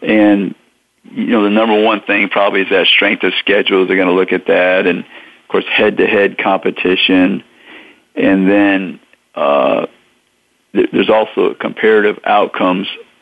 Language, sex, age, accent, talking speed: English, male, 50-69, American, 140 wpm